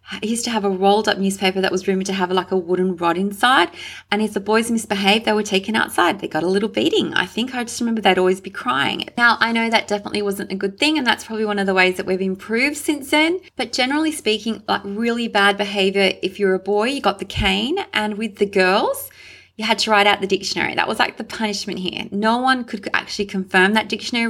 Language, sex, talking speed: English, female, 250 wpm